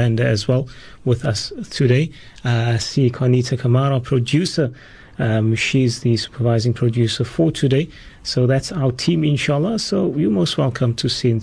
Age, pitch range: 30-49, 115-140 Hz